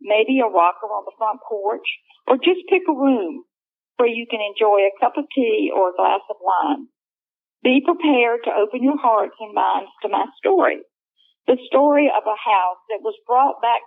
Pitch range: 215-315 Hz